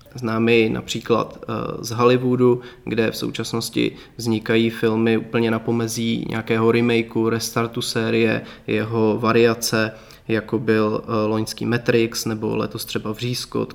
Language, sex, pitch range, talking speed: Czech, male, 115-125 Hz, 115 wpm